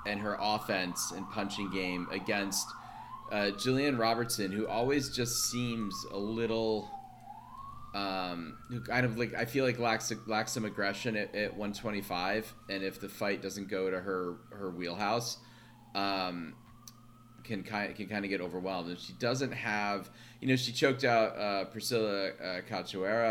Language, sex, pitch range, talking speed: English, male, 95-115 Hz, 160 wpm